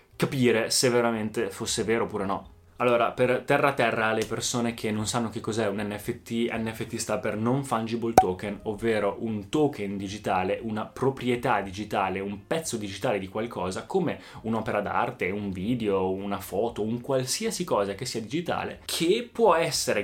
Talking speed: 160 wpm